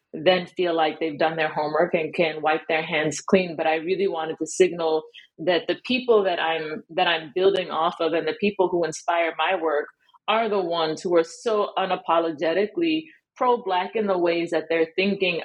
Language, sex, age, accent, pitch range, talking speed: English, female, 30-49, American, 160-195 Hz, 195 wpm